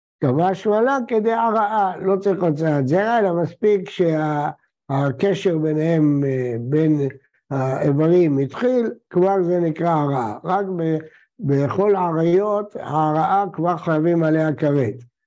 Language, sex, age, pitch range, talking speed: Hebrew, male, 60-79, 150-195 Hz, 105 wpm